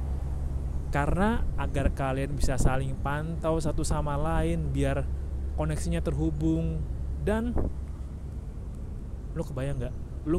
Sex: male